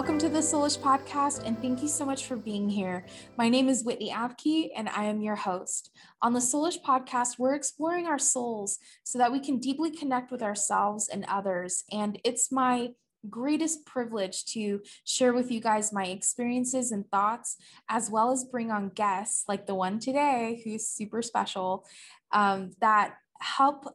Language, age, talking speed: English, 20-39, 180 wpm